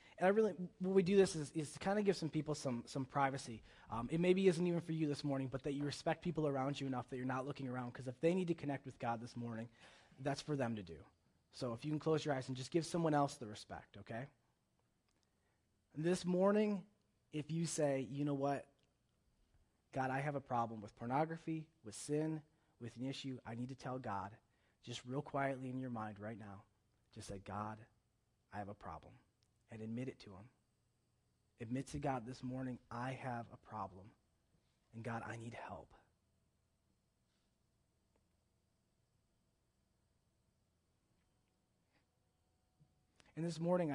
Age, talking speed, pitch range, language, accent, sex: 30-49, 180 wpm, 110-150 Hz, English, American, male